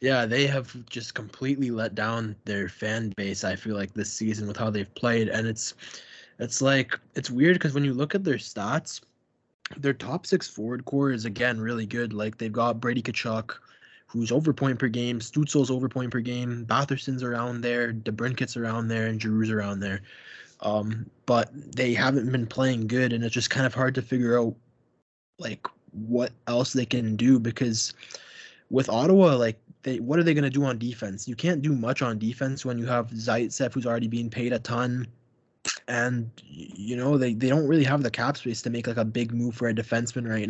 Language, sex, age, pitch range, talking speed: English, male, 20-39, 110-130 Hz, 205 wpm